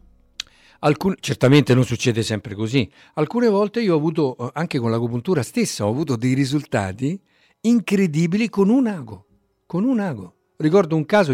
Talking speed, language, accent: 155 wpm, Italian, native